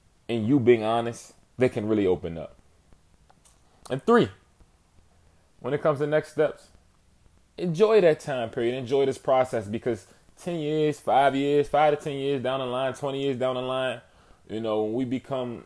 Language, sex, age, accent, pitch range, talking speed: English, male, 20-39, American, 105-145 Hz, 175 wpm